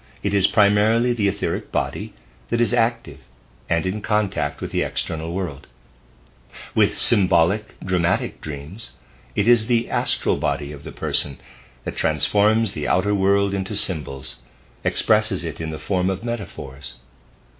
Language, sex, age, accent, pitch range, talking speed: English, male, 50-69, American, 75-105 Hz, 145 wpm